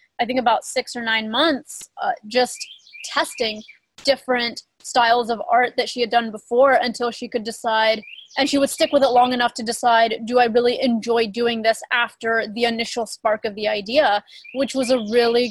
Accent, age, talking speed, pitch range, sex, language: American, 20-39, 195 wpm, 225-250 Hz, female, English